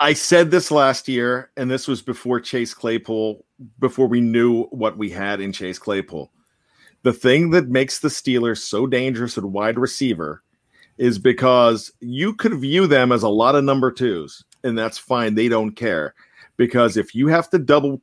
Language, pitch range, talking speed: English, 120-140 Hz, 185 wpm